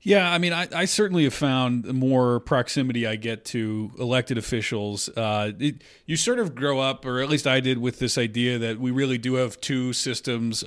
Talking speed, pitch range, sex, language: 210 wpm, 125-150 Hz, male, English